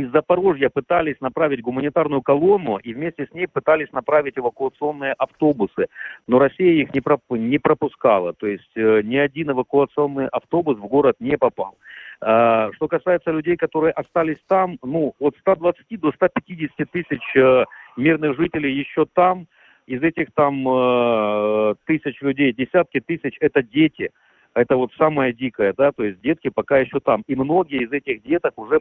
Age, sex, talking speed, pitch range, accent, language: 50-69, male, 155 wpm, 130-165 Hz, native, Russian